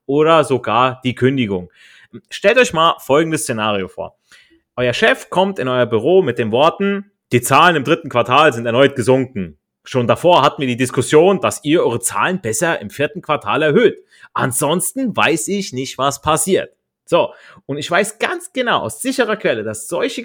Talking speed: 175 wpm